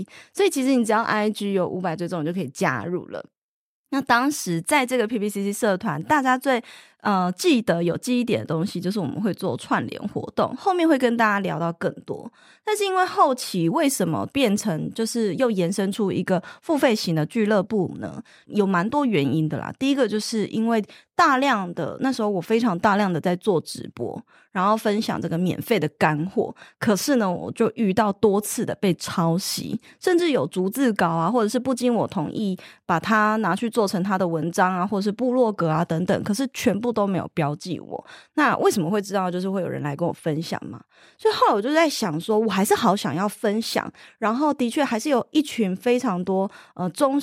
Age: 20-39